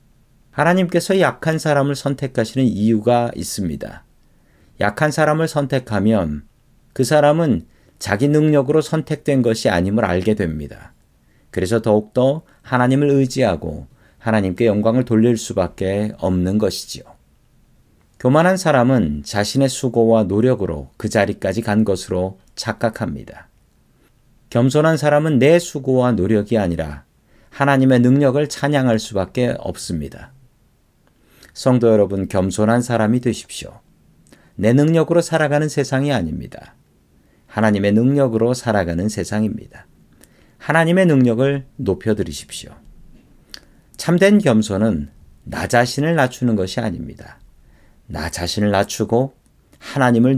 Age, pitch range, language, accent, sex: 40-59, 100-135 Hz, Korean, native, male